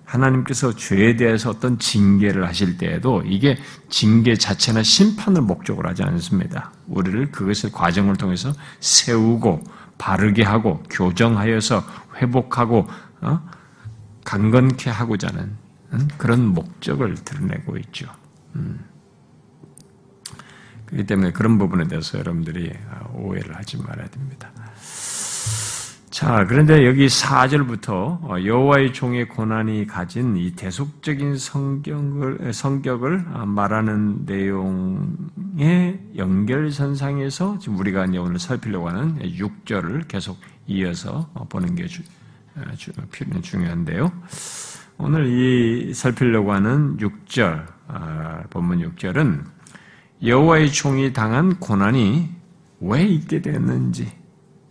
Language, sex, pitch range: Korean, male, 105-150 Hz